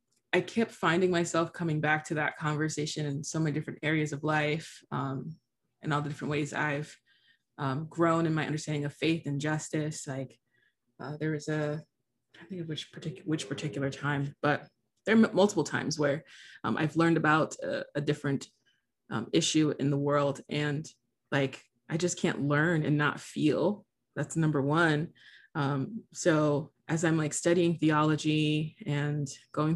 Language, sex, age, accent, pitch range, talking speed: English, female, 20-39, American, 140-160 Hz, 170 wpm